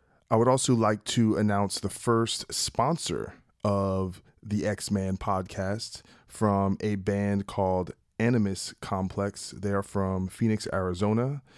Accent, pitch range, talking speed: American, 95-110 Hz, 125 wpm